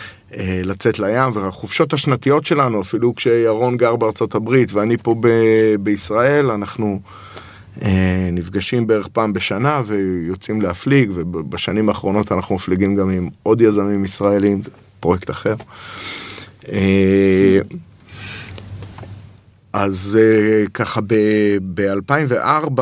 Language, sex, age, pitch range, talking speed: Hebrew, male, 30-49, 100-115 Hz, 90 wpm